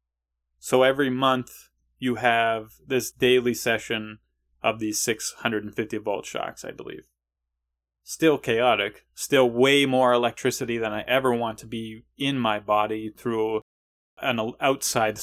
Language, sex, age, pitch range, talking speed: English, male, 30-49, 105-150 Hz, 125 wpm